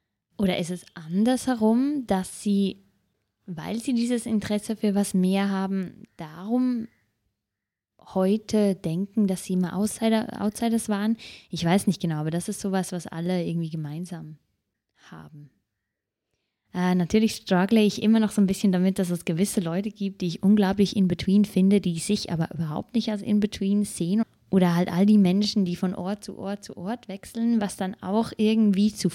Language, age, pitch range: English, 20-39, 175-210 Hz